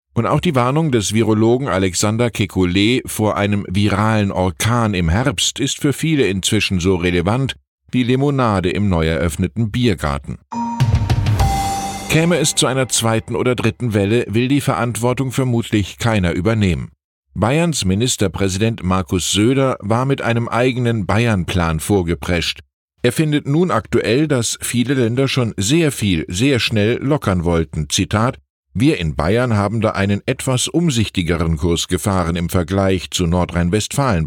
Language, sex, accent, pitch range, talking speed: German, male, German, 90-125 Hz, 140 wpm